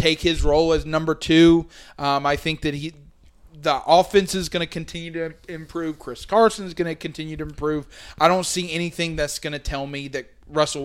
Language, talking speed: English, 210 wpm